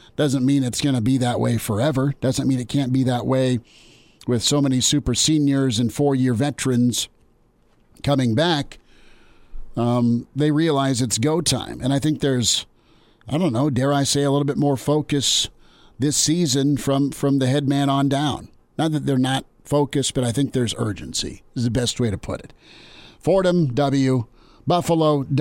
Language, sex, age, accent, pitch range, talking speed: English, male, 50-69, American, 125-150 Hz, 180 wpm